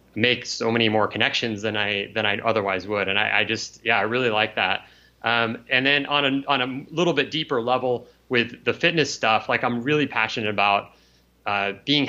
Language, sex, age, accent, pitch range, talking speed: English, male, 30-49, American, 105-135 Hz, 210 wpm